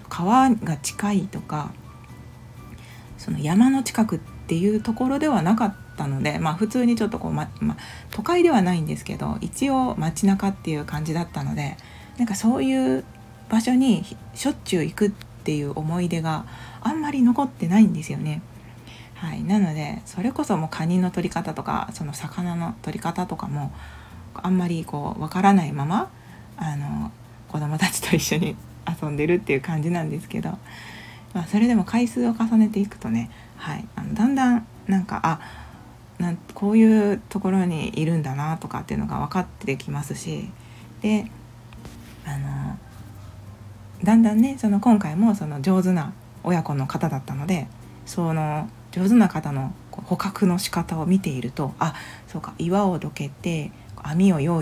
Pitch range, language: 145-205 Hz, Japanese